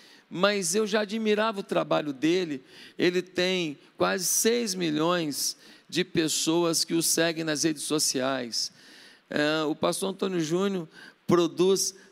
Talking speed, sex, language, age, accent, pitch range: 125 wpm, male, Portuguese, 50-69, Brazilian, 160-195 Hz